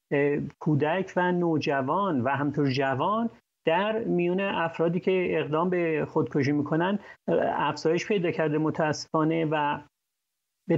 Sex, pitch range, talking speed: male, 145-185 Hz, 110 wpm